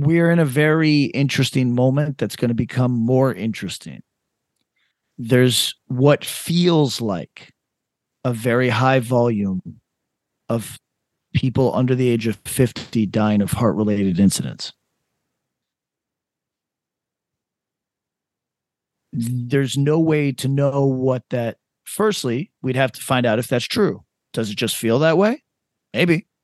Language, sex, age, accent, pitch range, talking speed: English, male, 40-59, American, 120-145 Hz, 125 wpm